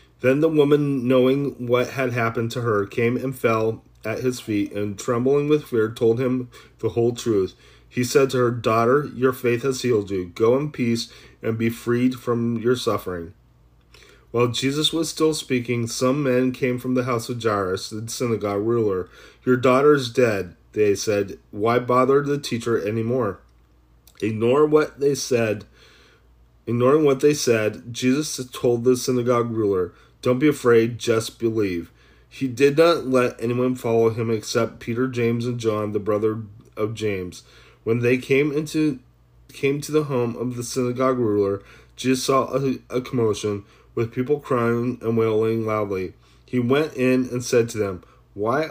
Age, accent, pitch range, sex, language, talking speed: 30-49, American, 110-130 Hz, male, English, 170 wpm